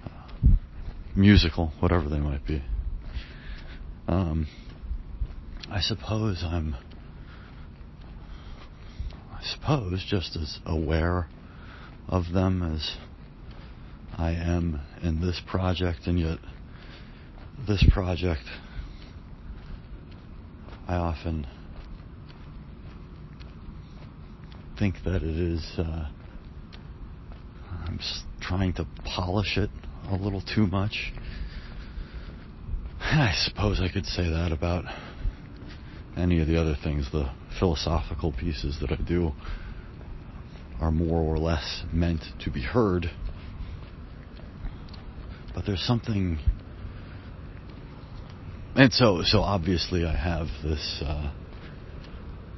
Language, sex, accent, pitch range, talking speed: English, male, American, 75-90 Hz, 90 wpm